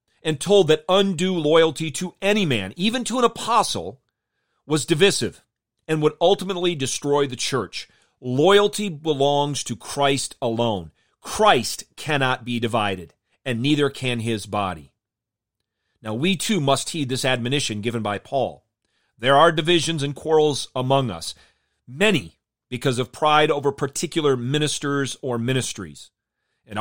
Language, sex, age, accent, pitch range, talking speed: English, male, 40-59, American, 115-155 Hz, 135 wpm